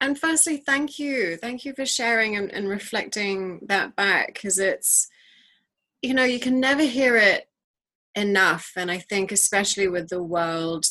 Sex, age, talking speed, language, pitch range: female, 30-49, 165 wpm, English, 170-205 Hz